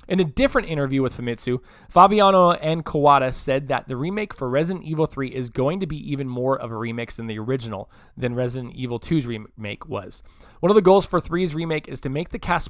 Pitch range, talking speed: 130-170 Hz, 220 wpm